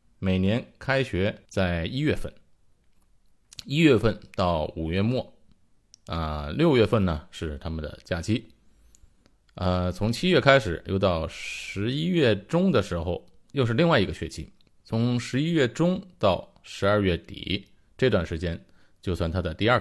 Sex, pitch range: male, 90-110 Hz